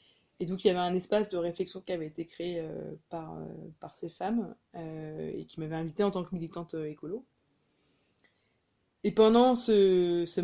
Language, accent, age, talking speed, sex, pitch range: French, French, 20-39, 190 wpm, female, 165-205 Hz